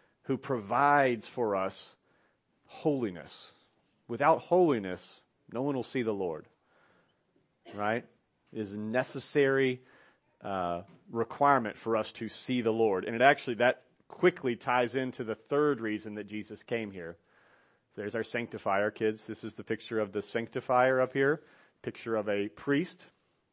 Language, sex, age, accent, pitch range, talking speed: English, male, 40-59, American, 110-130 Hz, 145 wpm